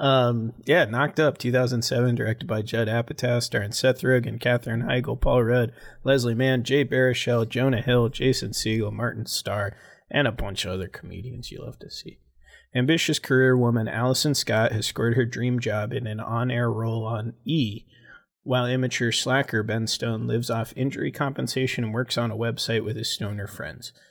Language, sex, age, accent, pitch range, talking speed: English, male, 30-49, American, 115-130 Hz, 175 wpm